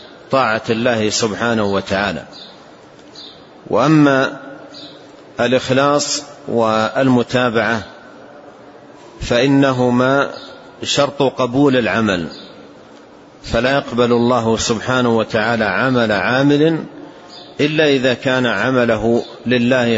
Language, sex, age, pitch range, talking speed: Arabic, male, 40-59, 115-130 Hz, 70 wpm